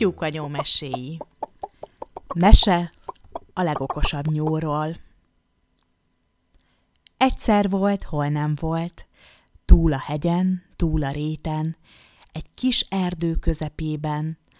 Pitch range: 150-180 Hz